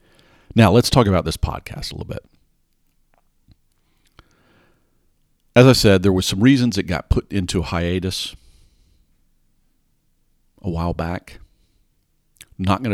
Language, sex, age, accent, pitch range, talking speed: English, male, 50-69, American, 80-105 Hz, 125 wpm